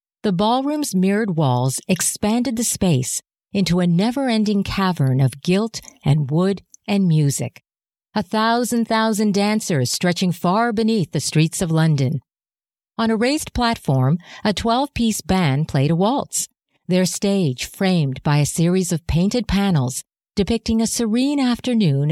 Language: English